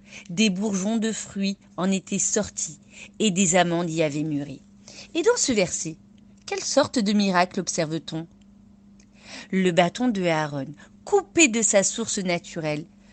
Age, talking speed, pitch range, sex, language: 40-59, 140 wpm, 185-230 Hz, female, French